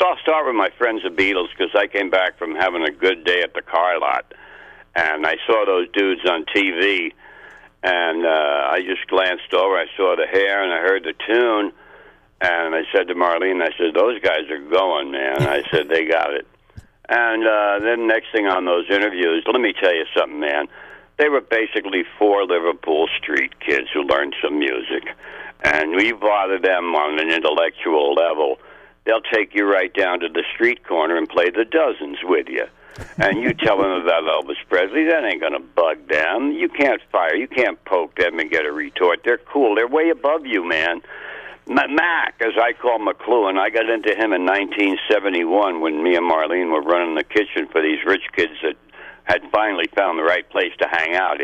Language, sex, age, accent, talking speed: English, male, 60-79, American, 200 wpm